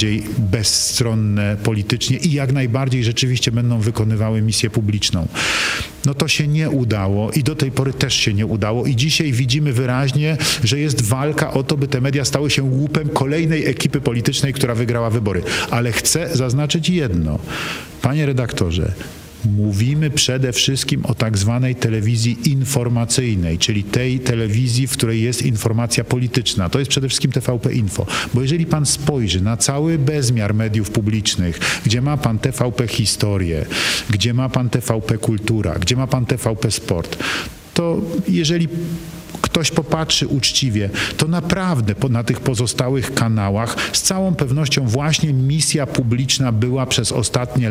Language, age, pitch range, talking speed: Polish, 50-69, 110-140 Hz, 145 wpm